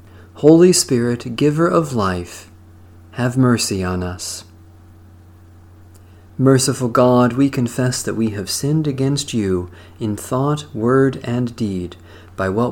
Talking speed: 125 wpm